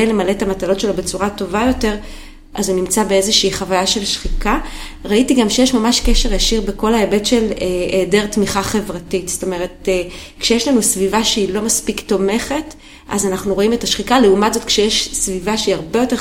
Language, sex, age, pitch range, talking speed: Hebrew, female, 30-49, 190-225 Hz, 180 wpm